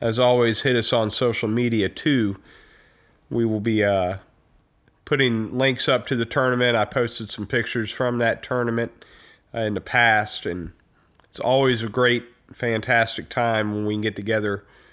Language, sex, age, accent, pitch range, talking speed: English, male, 40-59, American, 120-160 Hz, 165 wpm